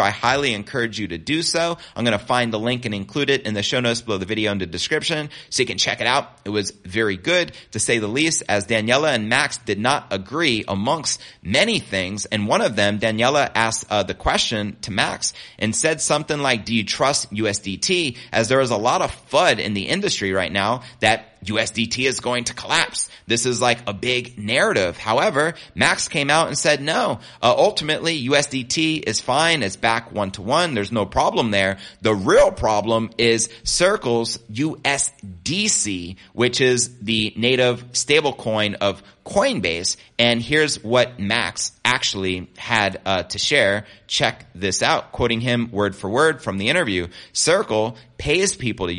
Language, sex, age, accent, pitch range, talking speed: English, male, 30-49, American, 100-125 Hz, 185 wpm